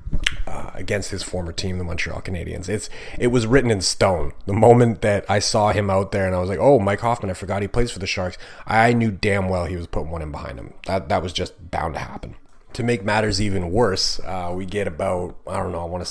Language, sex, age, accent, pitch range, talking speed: English, male, 30-49, American, 90-105 Hz, 255 wpm